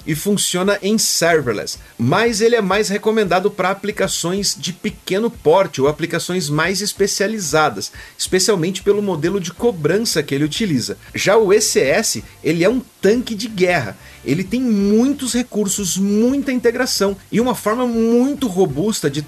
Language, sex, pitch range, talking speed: Portuguese, male, 165-215 Hz, 145 wpm